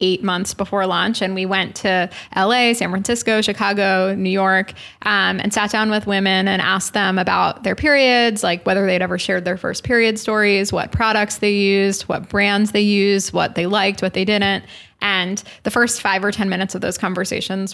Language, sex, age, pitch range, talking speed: English, female, 20-39, 180-205 Hz, 200 wpm